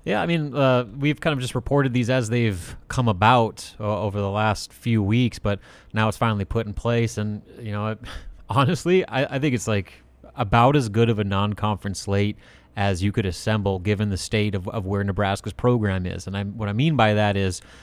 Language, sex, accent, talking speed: English, male, American, 220 wpm